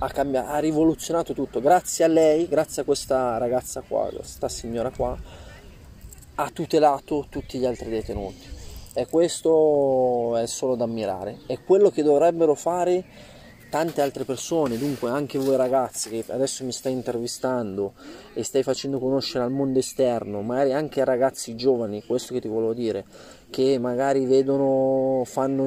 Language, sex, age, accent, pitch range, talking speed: Italian, male, 20-39, native, 120-140 Hz, 145 wpm